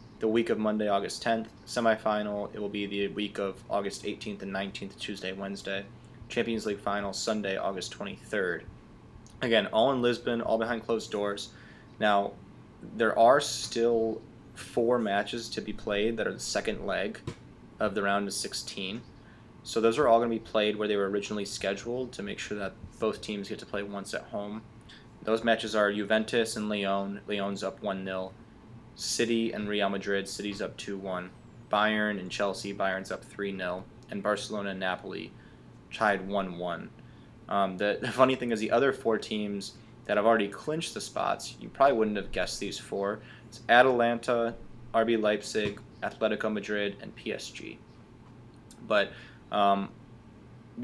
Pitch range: 100-115 Hz